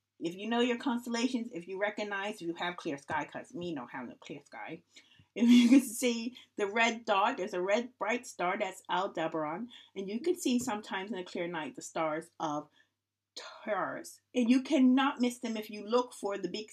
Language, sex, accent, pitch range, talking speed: English, female, American, 185-250 Hz, 210 wpm